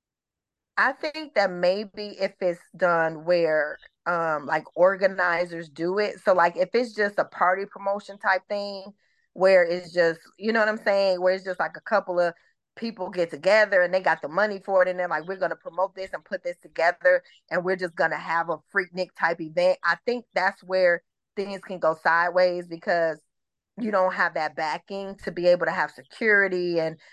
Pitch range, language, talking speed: 165-195 Hz, English, 205 wpm